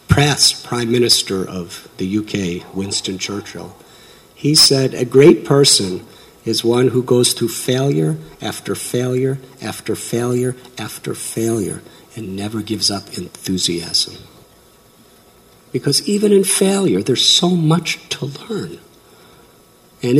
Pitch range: 105-150 Hz